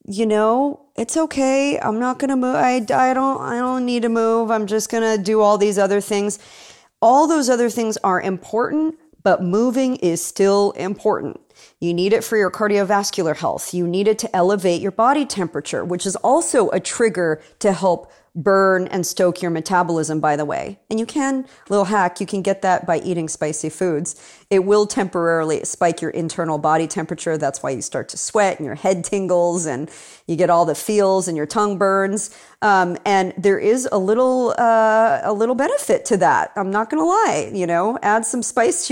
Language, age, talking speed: English, 40-59, 200 wpm